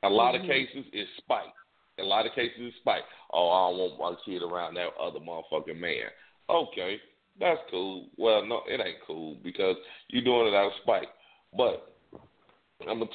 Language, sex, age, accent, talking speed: English, male, 50-69, American, 190 wpm